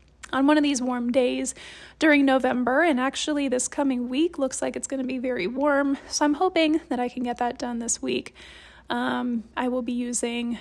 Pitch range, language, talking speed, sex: 245-285 Hz, English, 210 wpm, female